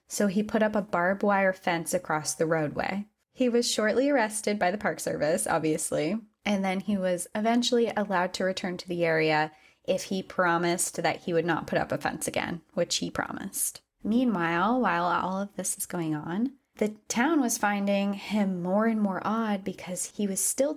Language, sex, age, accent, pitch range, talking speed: English, female, 20-39, American, 175-215 Hz, 195 wpm